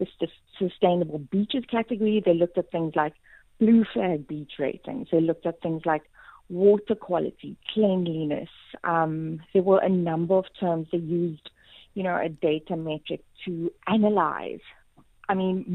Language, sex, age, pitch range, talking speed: English, female, 30-49, 160-200 Hz, 150 wpm